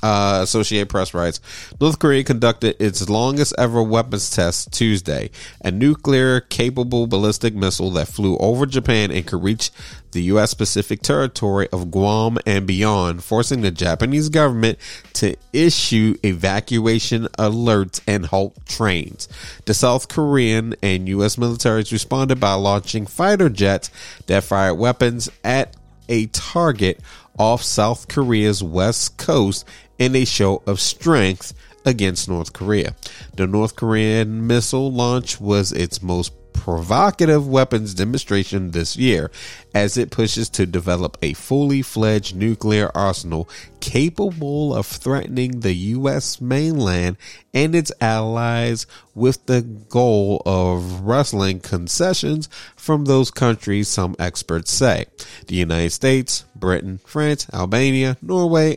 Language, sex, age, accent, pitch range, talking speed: English, male, 30-49, American, 95-125 Hz, 125 wpm